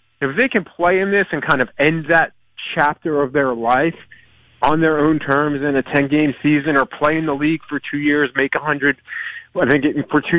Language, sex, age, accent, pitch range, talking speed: English, male, 30-49, American, 130-155 Hz, 220 wpm